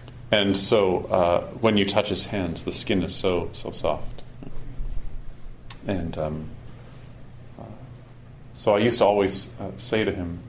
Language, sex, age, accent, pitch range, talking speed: English, male, 40-59, American, 105-125 Hz, 150 wpm